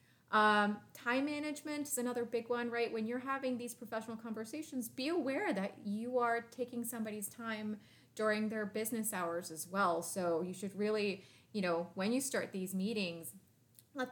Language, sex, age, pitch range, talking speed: English, female, 20-39, 185-235 Hz, 170 wpm